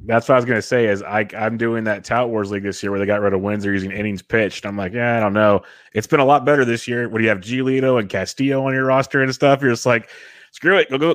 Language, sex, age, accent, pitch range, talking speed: English, male, 30-49, American, 100-130 Hz, 305 wpm